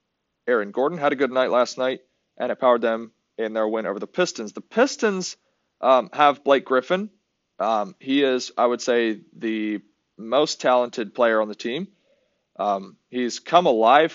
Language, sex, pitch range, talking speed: English, male, 115-150 Hz, 175 wpm